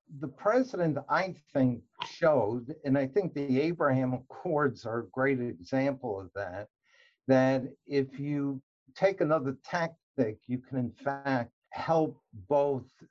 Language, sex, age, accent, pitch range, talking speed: English, male, 60-79, American, 125-150 Hz, 135 wpm